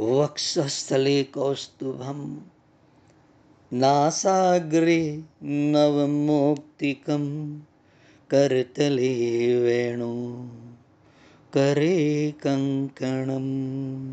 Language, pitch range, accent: Gujarati, 145-195 Hz, native